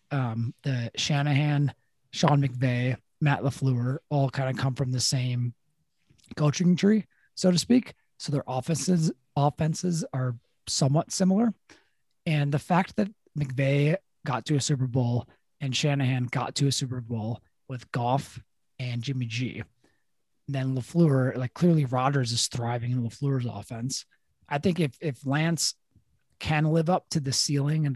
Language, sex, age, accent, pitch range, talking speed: English, male, 30-49, American, 125-150 Hz, 150 wpm